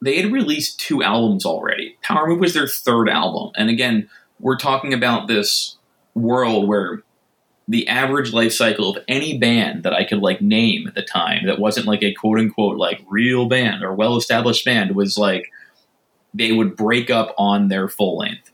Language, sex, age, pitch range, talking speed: English, male, 20-39, 105-130 Hz, 185 wpm